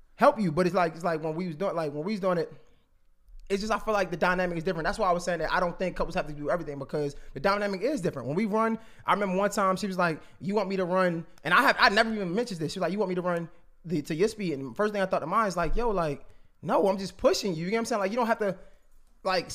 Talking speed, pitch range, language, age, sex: 330 wpm, 165-200 Hz, English, 20-39, male